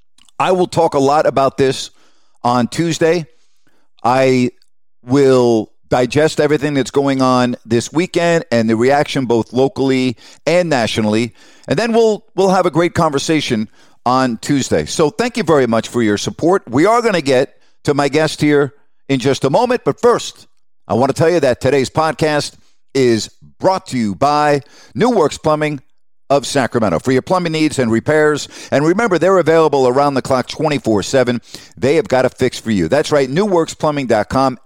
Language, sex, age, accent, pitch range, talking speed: English, male, 50-69, American, 125-155 Hz, 175 wpm